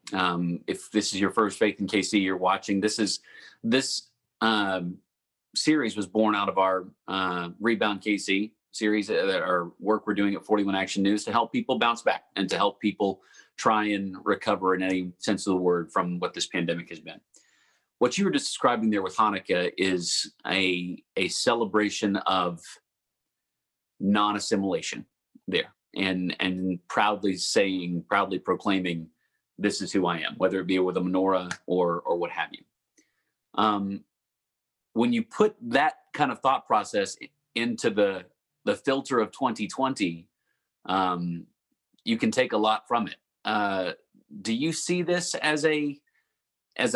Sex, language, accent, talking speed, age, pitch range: male, English, American, 165 wpm, 40-59, 95-130 Hz